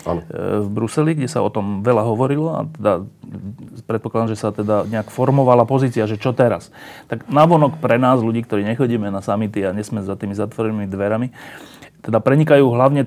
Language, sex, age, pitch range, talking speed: Slovak, male, 30-49, 110-135 Hz, 175 wpm